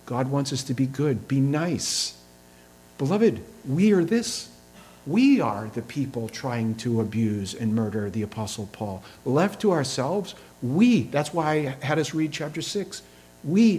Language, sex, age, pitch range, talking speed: English, male, 50-69, 110-165 Hz, 160 wpm